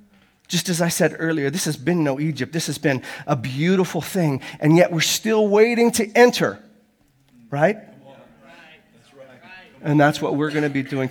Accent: American